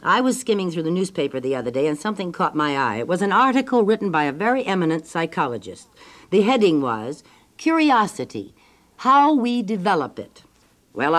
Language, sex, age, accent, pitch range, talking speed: English, female, 60-79, American, 155-230 Hz, 175 wpm